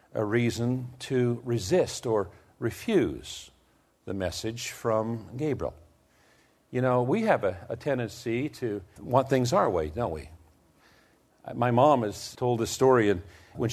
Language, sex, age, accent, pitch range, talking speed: English, male, 50-69, American, 105-130 Hz, 140 wpm